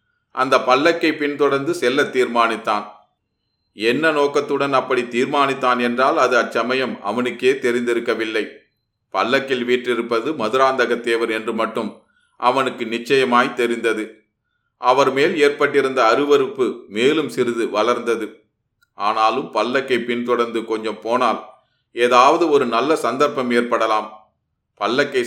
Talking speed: 95 wpm